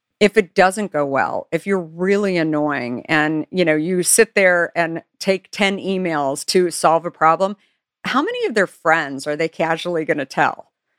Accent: American